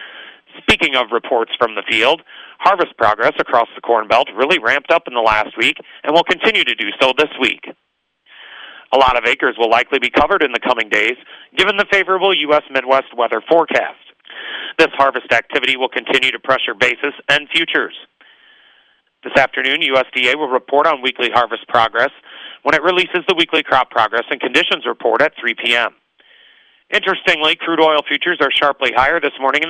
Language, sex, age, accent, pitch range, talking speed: English, male, 40-59, American, 130-180 Hz, 180 wpm